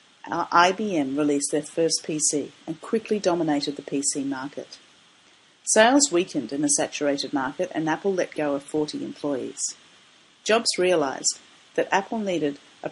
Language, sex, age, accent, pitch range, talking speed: English, female, 40-59, Australian, 150-205 Hz, 140 wpm